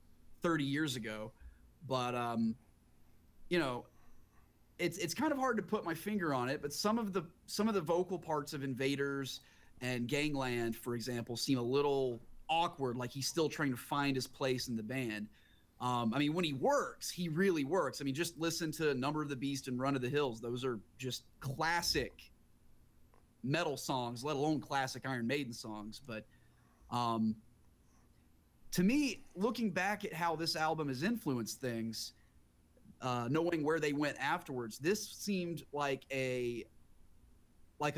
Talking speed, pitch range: 170 wpm, 120-155 Hz